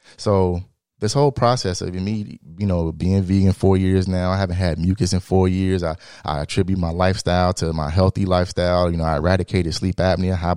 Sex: male